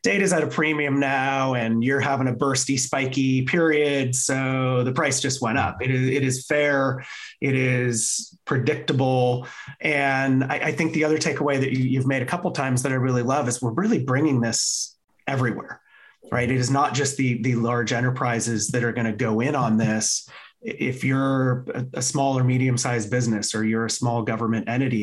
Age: 30-49